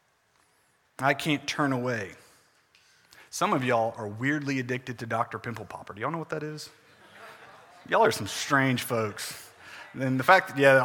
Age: 30-49